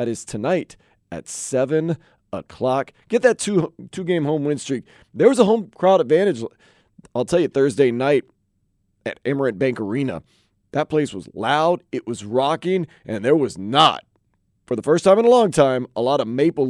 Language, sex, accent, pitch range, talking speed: English, male, American, 120-170 Hz, 190 wpm